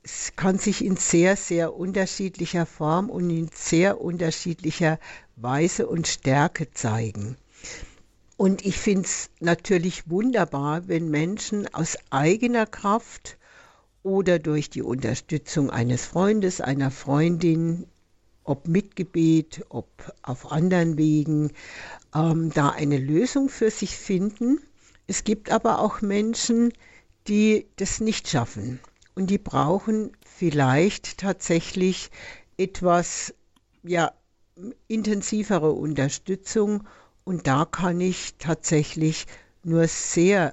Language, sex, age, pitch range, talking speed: German, female, 60-79, 150-195 Hz, 110 wpm